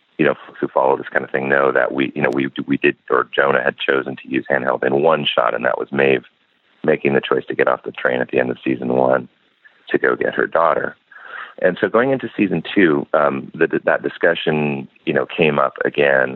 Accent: American